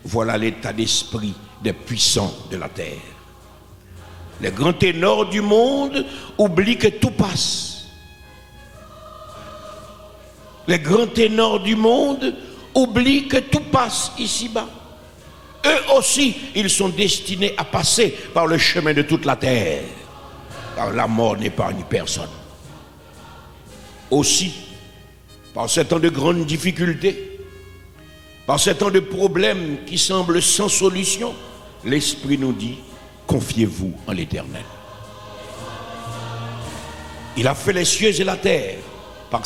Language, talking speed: French, 120 wpm